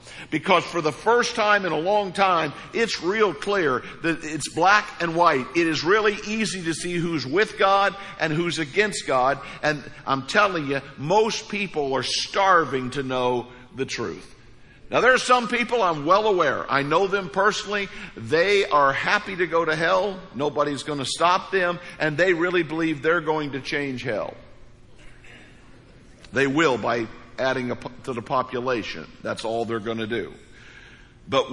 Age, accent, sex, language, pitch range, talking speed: 50-69, American, male, English, 135-195 Hz, 175 wpm